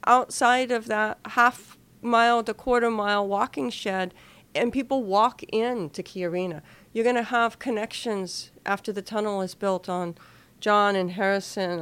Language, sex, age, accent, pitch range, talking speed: English, female, 50-69, American, 180-220 Hz, 150 wpm